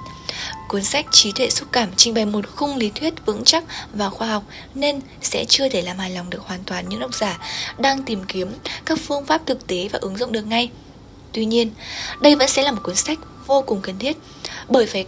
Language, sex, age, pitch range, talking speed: Vietnamese, female, 10-29, 205-265 Hz, 230 wpm